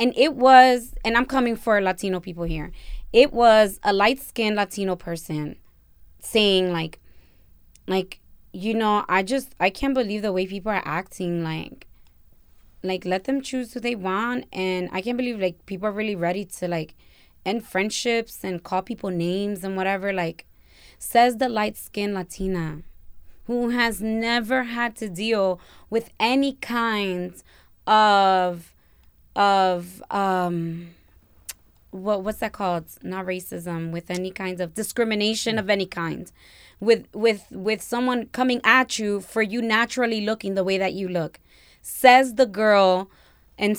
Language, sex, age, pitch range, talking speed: English, female, 20-39, 180-235 Hz, 150 wpm